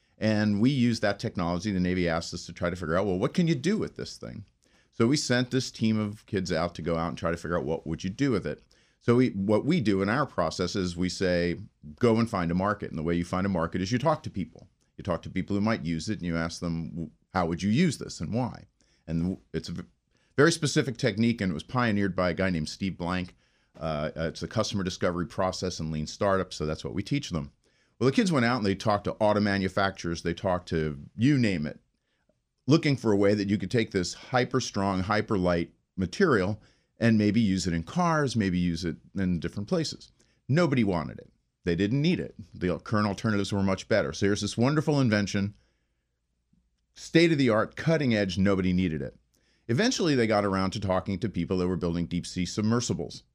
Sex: male